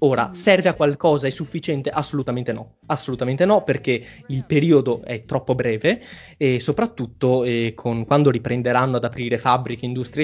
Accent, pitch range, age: native, 120-145 Hz, 20-39